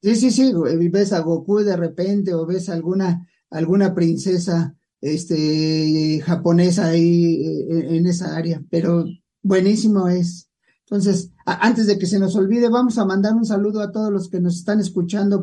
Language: English